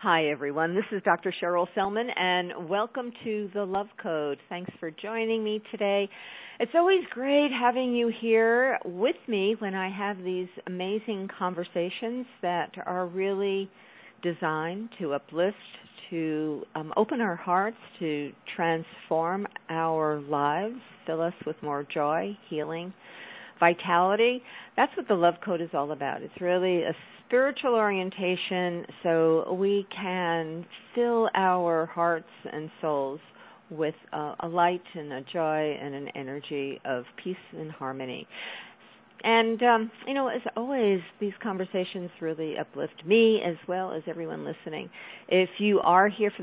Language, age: English, 50-69